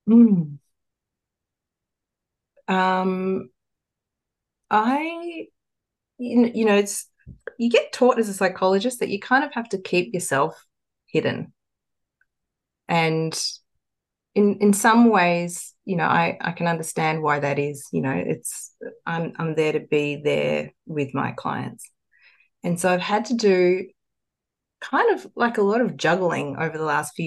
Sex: female